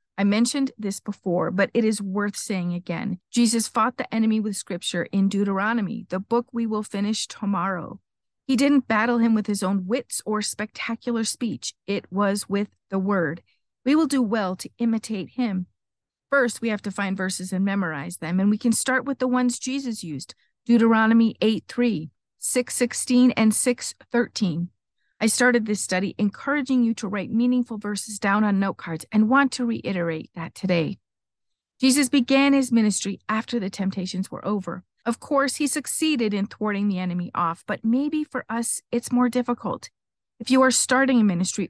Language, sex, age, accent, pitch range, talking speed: English, female, 40-59, American, 195-245 Hz, 175 wpm